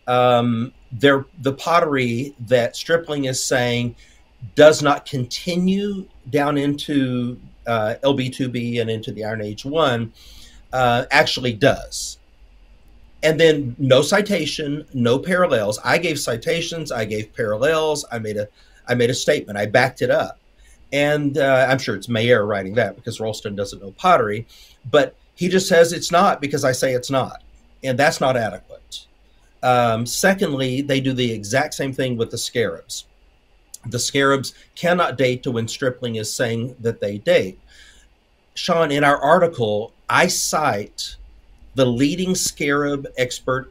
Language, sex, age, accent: English, male, 50-69, American